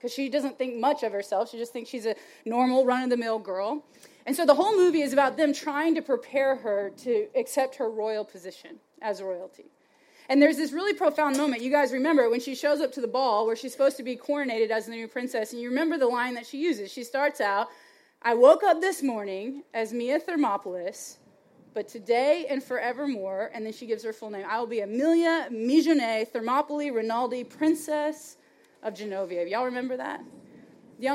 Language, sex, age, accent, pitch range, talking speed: English, female, 20-39, American, 220-285 Hz, 200 wpm